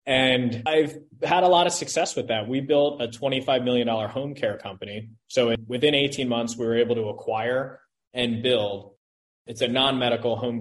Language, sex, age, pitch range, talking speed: English, male, 20-39, 115-140 Hz, 180 wpm